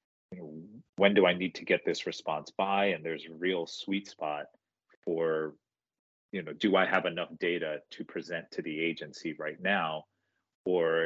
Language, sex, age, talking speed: English, male, 30-49, 170 wpm